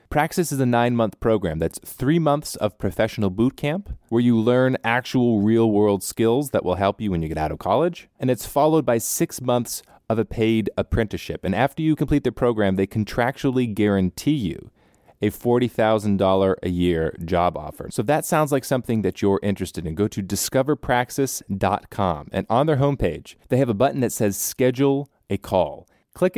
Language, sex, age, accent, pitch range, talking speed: English, male, 30-49, American, 95-130 Hz, 185 wpm